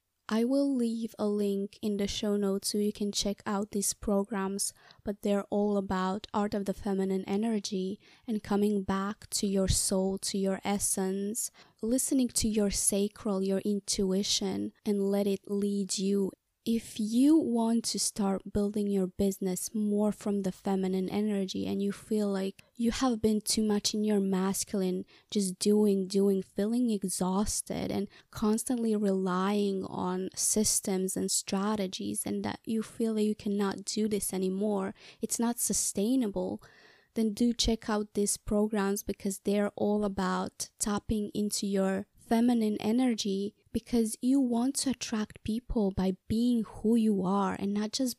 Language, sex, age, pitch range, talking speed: English, female, 20-39, 195-215 Hz, 155 wpm